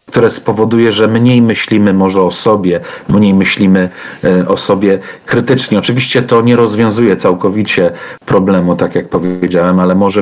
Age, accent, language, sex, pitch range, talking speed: 40-59, native, Polish, male, 100-115 Hz, 140 wpm